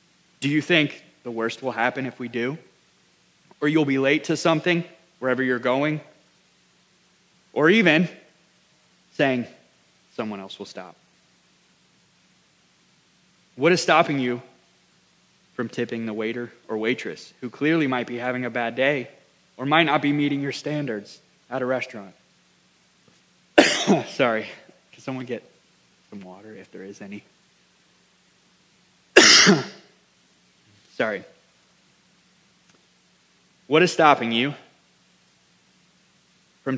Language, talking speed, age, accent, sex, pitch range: English, 115 wpm, 20-39, American, male, 115-155 Hz